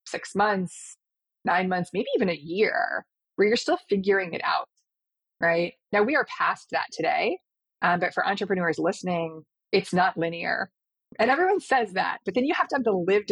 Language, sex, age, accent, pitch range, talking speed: English, female, 30-49, American, 170-205 Hz, 185 wpm